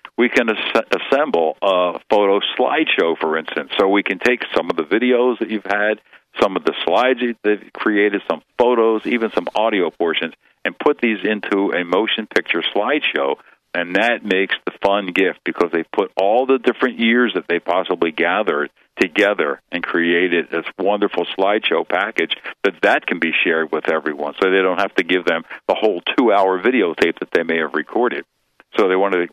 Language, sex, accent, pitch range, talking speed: English, male, American, 85-100 Hz, 185 wpm